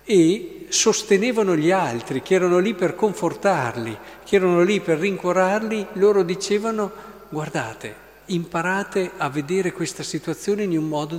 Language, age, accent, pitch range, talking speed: Italian, 50-69, native, 150-200 Hz, 135 wpm